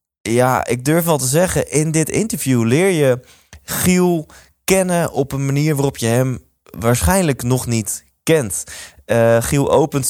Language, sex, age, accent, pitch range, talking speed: Dutch, male, 20-39, Dutch, 120-155 Hz, 155 wpm